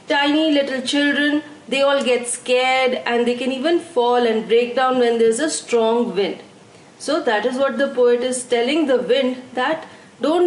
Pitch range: 240-305 Hz